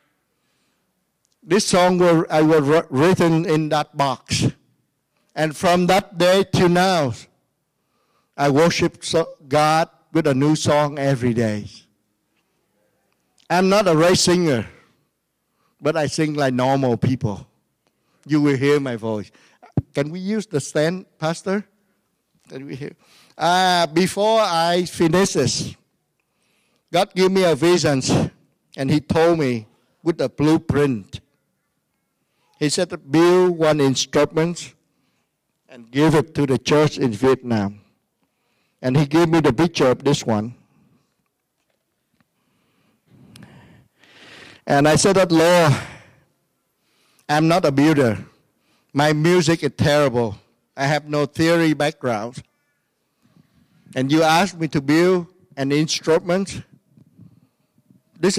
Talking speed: 115 wpm